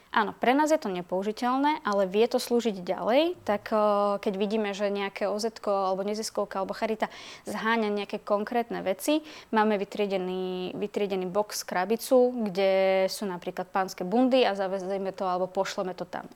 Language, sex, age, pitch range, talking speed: Slovak, female, 20-39, 190-220 Hz, 160 wpm